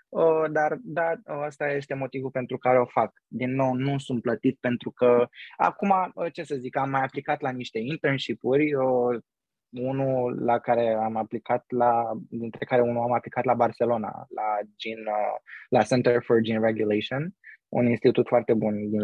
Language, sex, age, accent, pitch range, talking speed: Romanian, male, 20-39, native, 115-135 Hz, 175 wpm